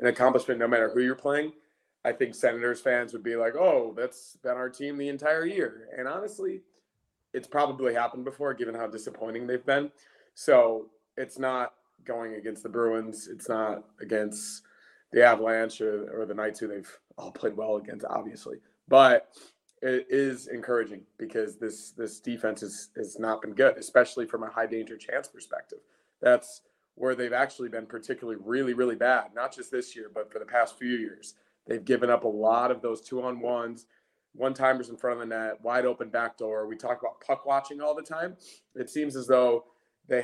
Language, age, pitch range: English, 20-39, 110-145 Hz